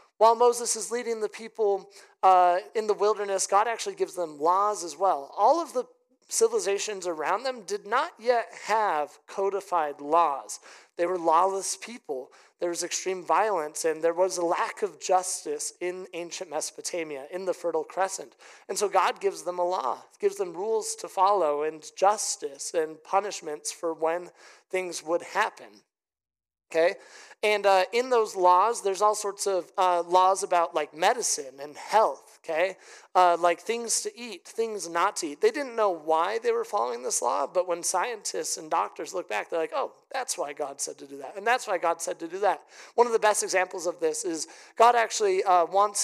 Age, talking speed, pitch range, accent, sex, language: 30-49, 190 wpm, 175-250 Hz, American, male, English